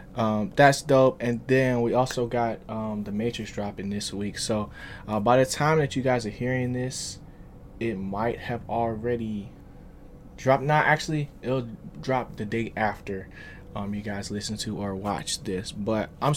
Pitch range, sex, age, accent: 105-120 Hz, male, 20-39, American